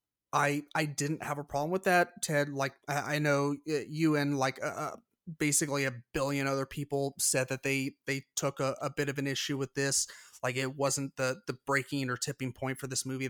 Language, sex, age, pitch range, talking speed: English, male, 30-49, 135-150 Hz, 210 wpm